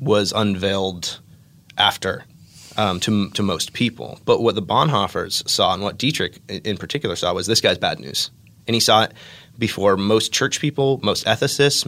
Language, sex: English, male